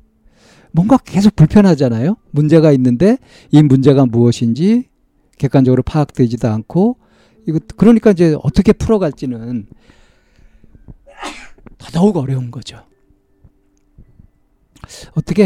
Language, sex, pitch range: Korean, male, 120-165 Hz